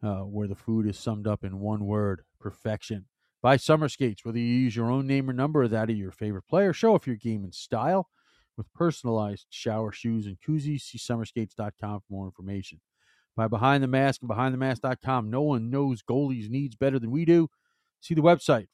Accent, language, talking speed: American, English, 200 wpm